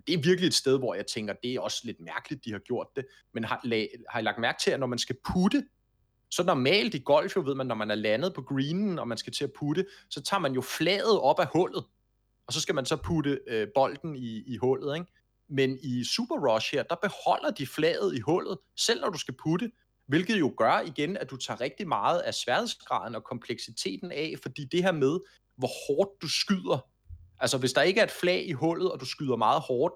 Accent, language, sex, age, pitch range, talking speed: native, Danish, male, 30-49, 120-170 Hz, 235 wpm